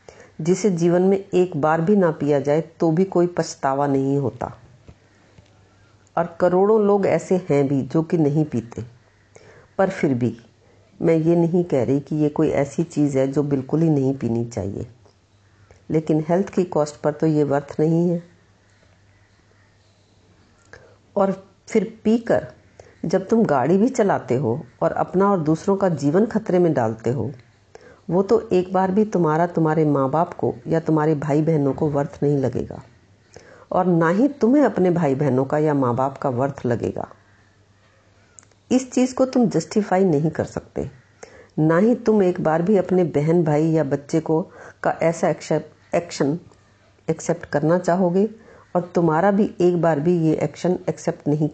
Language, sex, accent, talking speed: Hindi, female, native, 165 wpm